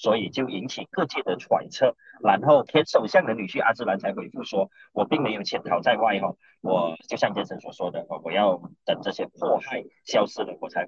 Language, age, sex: Chinese, 40-59, male